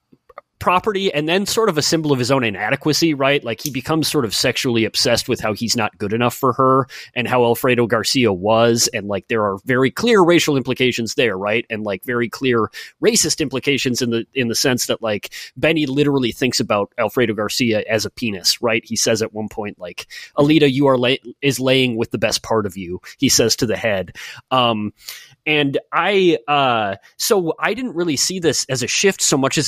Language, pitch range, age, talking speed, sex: English, 115-155 Hz, 30-49, 210 wpm, male